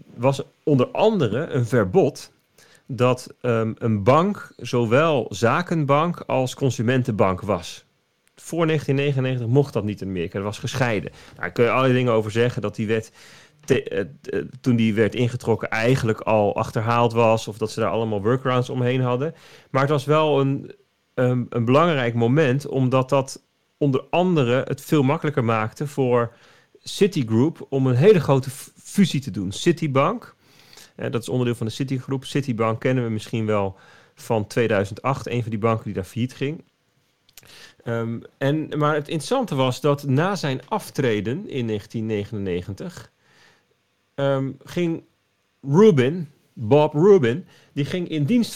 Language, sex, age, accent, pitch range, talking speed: Dutch, male, 40-59, Dutch, 115-145 Hz, 155 wpm